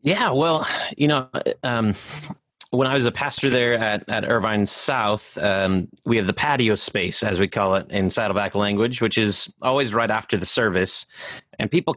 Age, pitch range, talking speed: 30-49, 115-175 Hz, 185 wpm